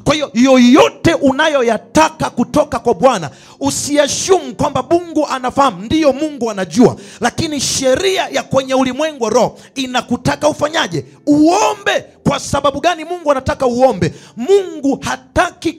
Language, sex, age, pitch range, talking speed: English, male, 40-59, 240-300 Hz, 125 wpm